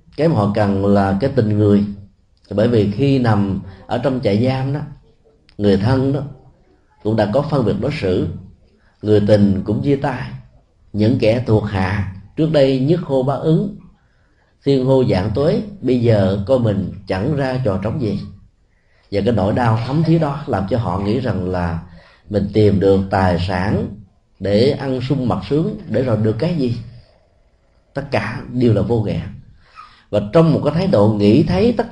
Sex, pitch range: male, 100-135 Hz